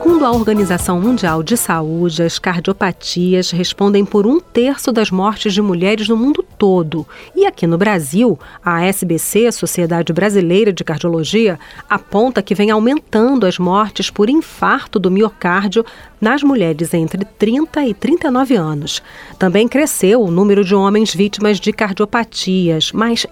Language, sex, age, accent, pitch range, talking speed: Portuguese, female, 40-59, Brazilian, 185-235 Hz, 145 wpm